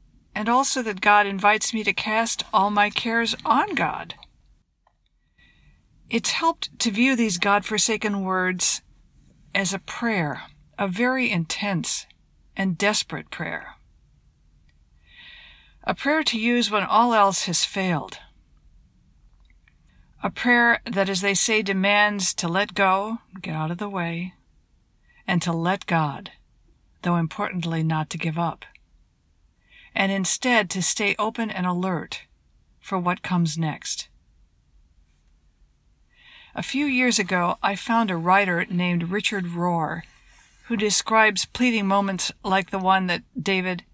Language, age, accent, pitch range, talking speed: English, 50-69, American, 175-215 Hz, 130 wpm